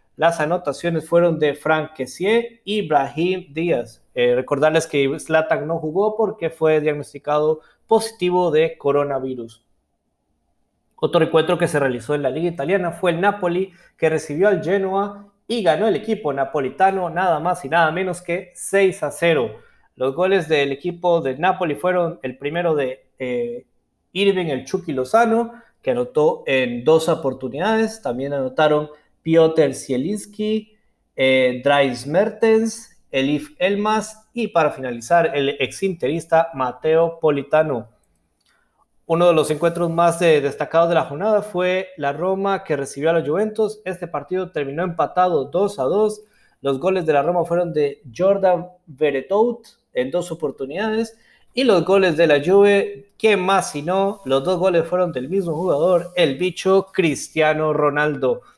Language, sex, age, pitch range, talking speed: Spanish, male, 30-49, 150-195 Hz, 150 wpm